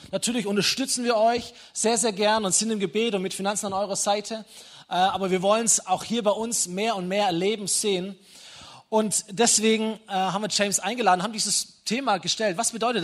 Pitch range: 180-220 Hz